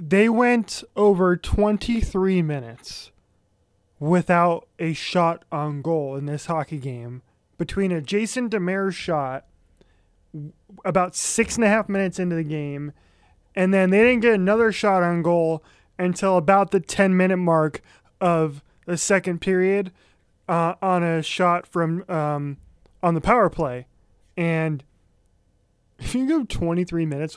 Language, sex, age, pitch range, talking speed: English, male, 20-39, 155-210 Hz, 135 wpm